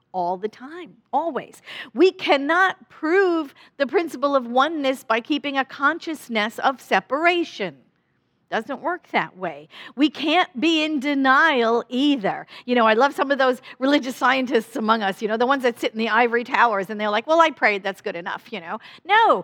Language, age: English, 50-69